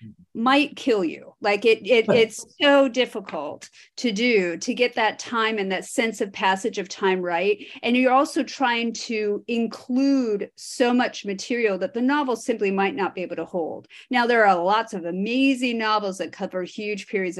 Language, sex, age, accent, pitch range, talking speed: English, female, 40-59, American, 185-255 Hz, 185 wpm